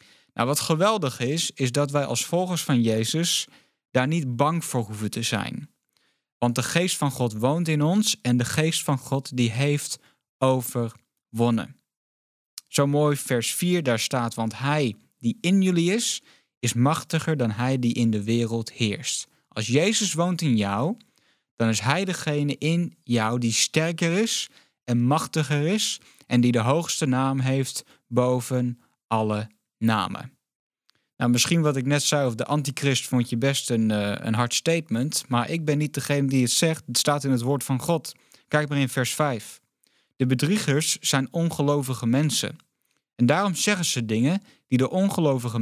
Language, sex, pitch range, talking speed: Dutch, male, 120-155 Hz, 170 wpm